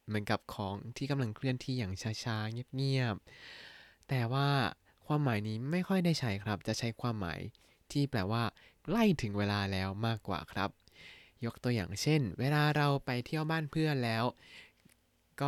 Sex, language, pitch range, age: male, Thai, 110-140 Hz, 20-39